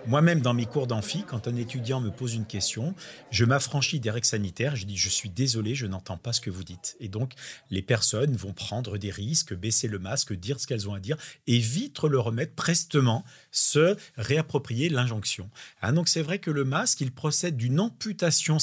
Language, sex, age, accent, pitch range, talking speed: French, male, 40-59, French, 105-145 Hz, 215 wpm